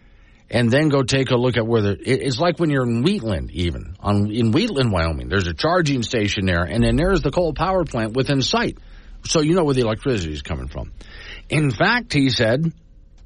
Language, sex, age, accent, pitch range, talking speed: English, male, 50-69, American, 95-130 Hz, 215 wpm